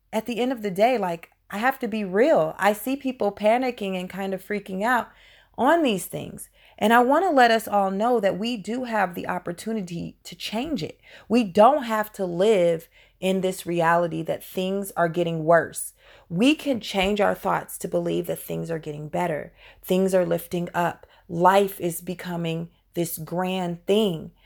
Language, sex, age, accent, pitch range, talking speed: English, female, 30-49, American, 175-220 Hz, 185 wpm